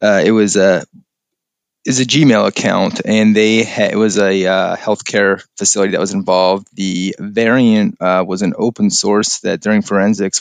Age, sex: 20-39, male